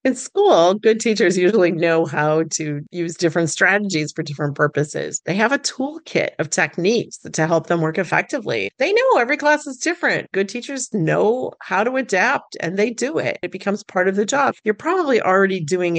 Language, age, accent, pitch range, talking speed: English, 40-59, American, 165-210 Hz, 190 wpm